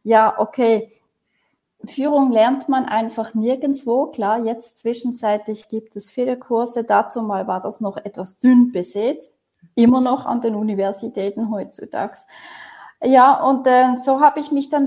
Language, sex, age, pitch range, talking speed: German, female, 30-49, 220-275 Hz, 145 wpm